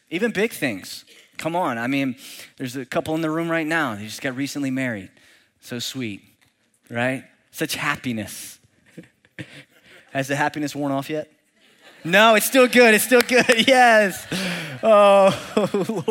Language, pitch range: English, 150-225 Hz